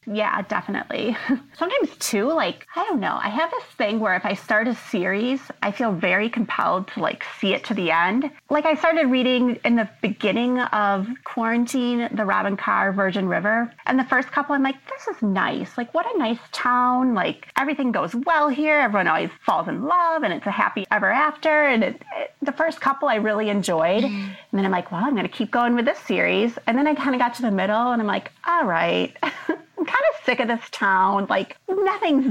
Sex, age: female, 30-49